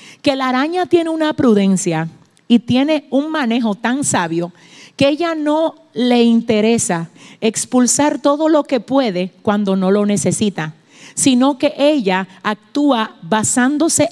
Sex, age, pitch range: female, 50-69, 190-250 Hz